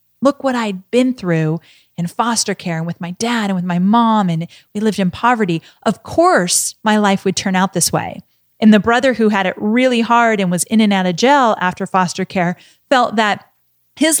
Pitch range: 180-235 Hz